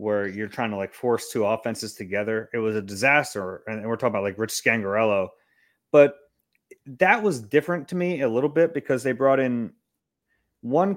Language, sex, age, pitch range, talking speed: English, male, 30-49, 110-140 Hz, 185 wpm